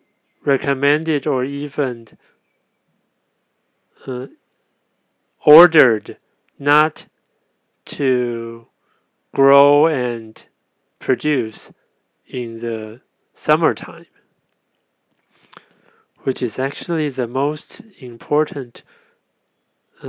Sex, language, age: male, Chinese, 40-59